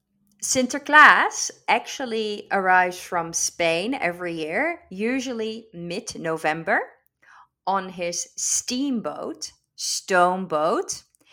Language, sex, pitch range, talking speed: Dutch, female, 170-240 Hz, 75 wpm